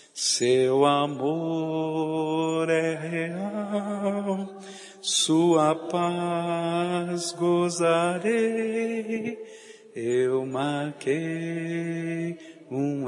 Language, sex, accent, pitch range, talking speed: Portuguese, male, Brazilian, 145-180 Hz, 45 wpm